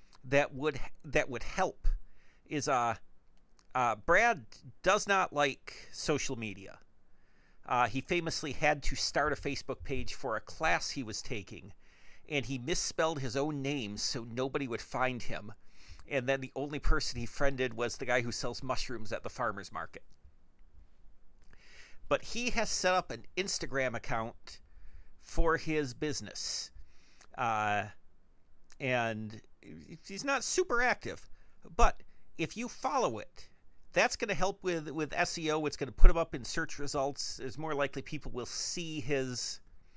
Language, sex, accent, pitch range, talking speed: English, male, American, 105-165 Hz, 155 wpm